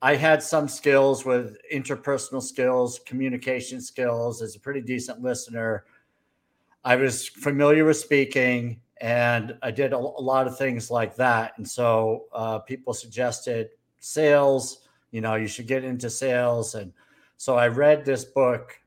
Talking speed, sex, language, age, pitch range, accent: 150 wpm, male, English, 50-69, 115-135 Hz, American